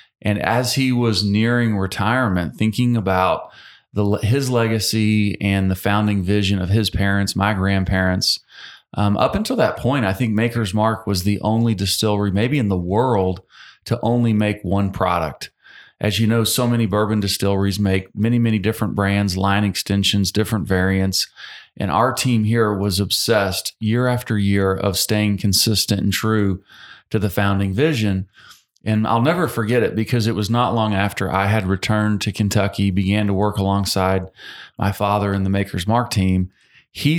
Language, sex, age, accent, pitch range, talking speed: English, male, 40-59, American, 100-110 Hz, 165 wpm